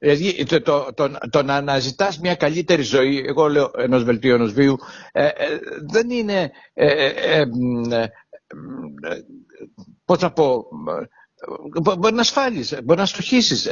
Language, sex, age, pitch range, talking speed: Greek, male, 60-79, 150-205 Hz, 90 wpm